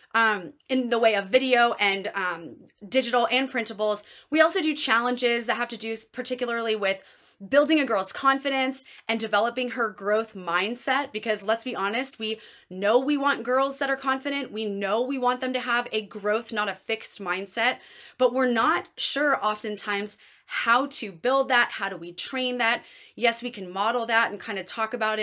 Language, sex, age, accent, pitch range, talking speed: English, female, 20-39, American, 215-260 Hz, 190 wpm